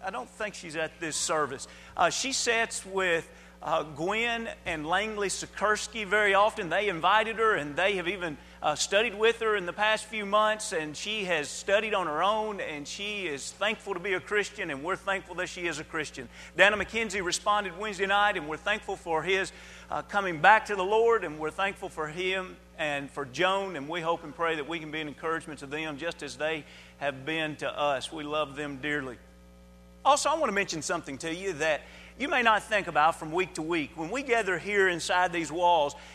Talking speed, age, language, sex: 215 wpm, 40-59, English, male